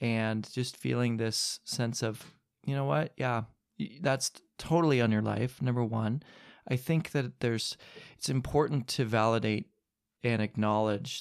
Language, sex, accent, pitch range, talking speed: English, male, American, 110-130 Hz, 145 wpm